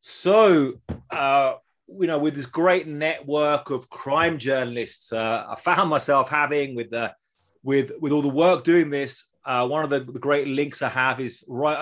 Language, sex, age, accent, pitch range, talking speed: English, male, 30-49, British, 125-150 Hz, 185 wpm